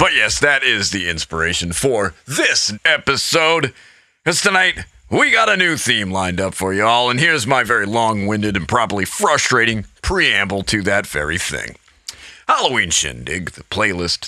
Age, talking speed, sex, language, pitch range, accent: 40-59, 155 wpm, male, English, 100-140 Hz, American